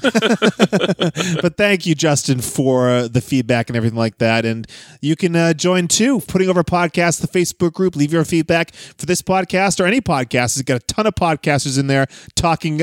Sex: male